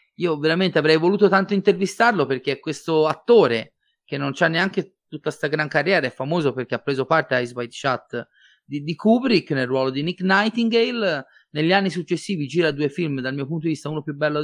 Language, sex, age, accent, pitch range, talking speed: Italian, male, 30-49, native, 130-180 Hz, 210 wpm